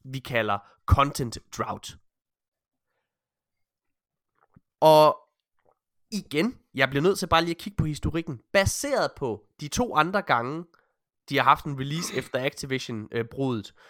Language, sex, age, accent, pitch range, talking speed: Danish, male, 20-39, native, 130-170 Hz, 130 wpm